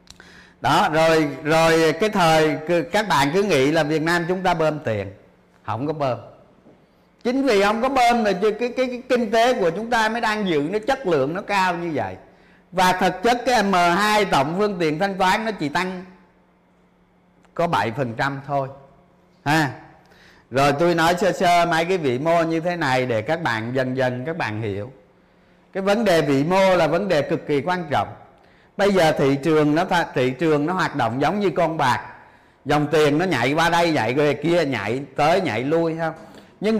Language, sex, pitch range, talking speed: Vietnamese, male, 140-190 Hz, 200 wpm